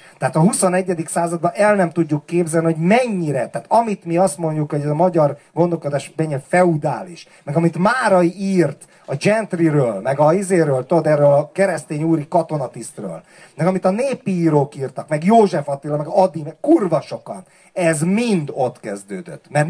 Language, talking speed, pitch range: Hungarian, 170 wpm, 150-190 Hz